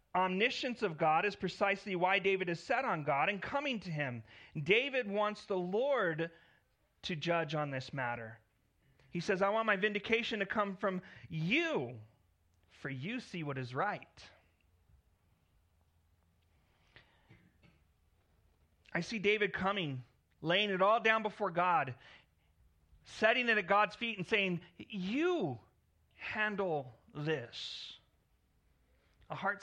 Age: 30-49